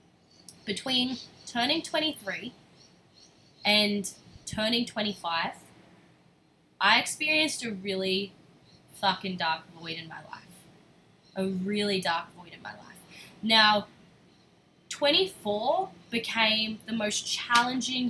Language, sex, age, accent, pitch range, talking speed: English, female, 20-39, Australian, 180-215 Hz, 95 wpm